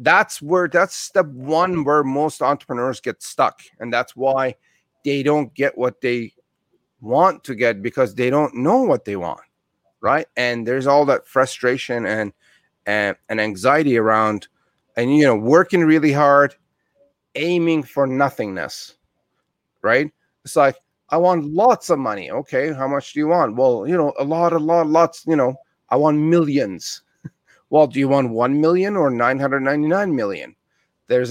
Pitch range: 115-150 Hz